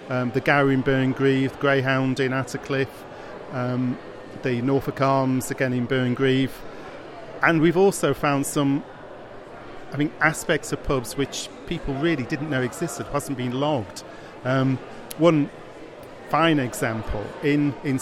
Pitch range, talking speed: 130-160 Hz, 135 wpm